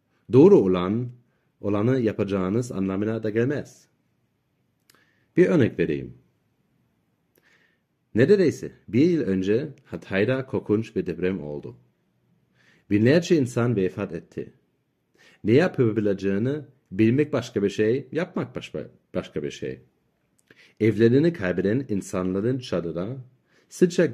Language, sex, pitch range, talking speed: Turkish, male, 95-135 Hz, 95 wpm